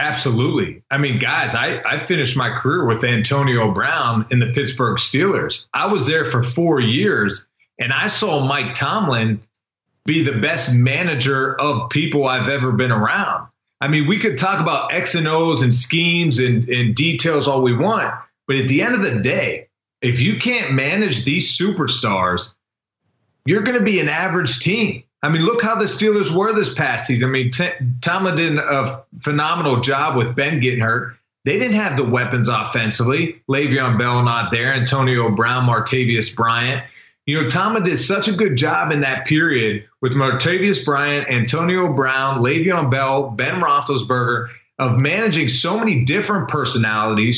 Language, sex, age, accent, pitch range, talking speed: English, male, 30-49, American, 120-165 Hz, 170 wpm